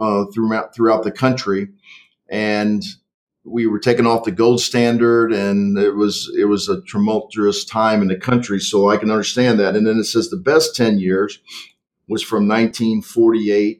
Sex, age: male, 50-69